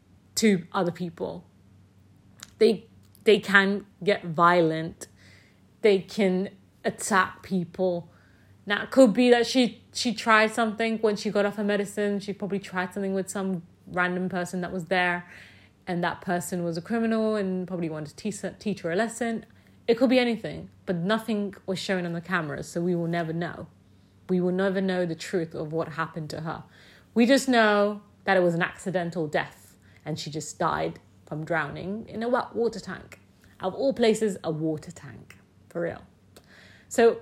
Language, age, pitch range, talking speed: English, 30-49, 160-205 Hz, 175 wpm